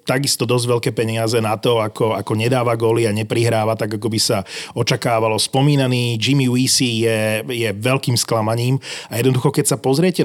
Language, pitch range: Slovak, 110-135 Hz